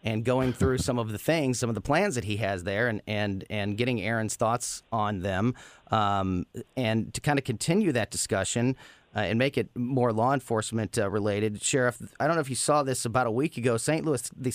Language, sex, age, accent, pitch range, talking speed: English, male, 30-49, American, 115-145 Hz, 225 wpm